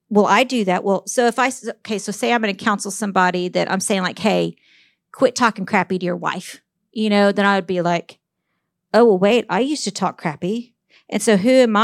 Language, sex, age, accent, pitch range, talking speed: English, female, 50-69, American, 195-230 Hz, 235 wpm